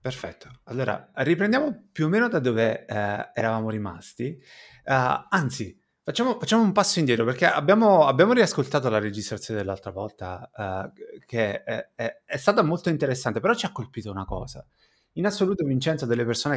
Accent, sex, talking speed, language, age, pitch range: native, male, 165 wpm, Italian, 30-49, 110-150 Hz